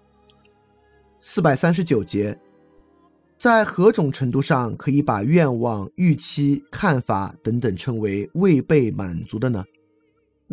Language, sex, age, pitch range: Chinese, male, 30-49, 100-150 Hz